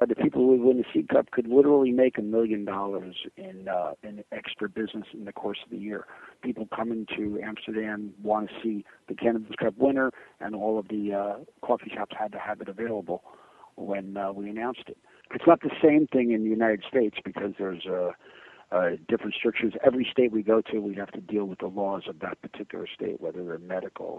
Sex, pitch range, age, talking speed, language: male, 100-125 Hz, 50-69, 215 wpm, English